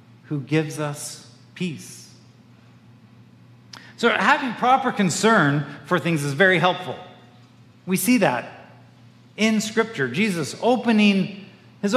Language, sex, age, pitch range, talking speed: English, male, 40-59, 155-215 Hz, 105 wpm